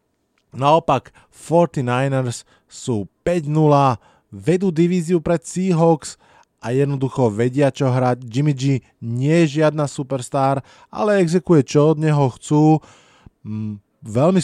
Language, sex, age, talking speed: Slovak, male, 20-39, 110 wpm